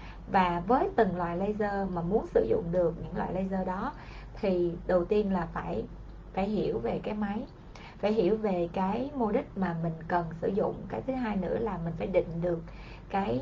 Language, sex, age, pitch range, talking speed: Vietnamese, female, 20-39, 175-220 Hz, 200 wpm